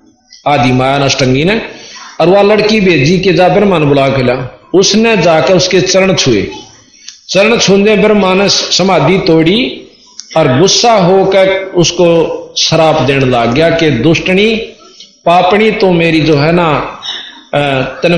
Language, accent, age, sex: Hindi, native, 50-69, male